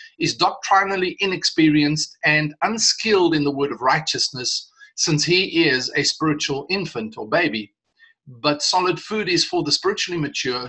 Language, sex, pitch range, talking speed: English, male, 150-205 Hz, 145 wpm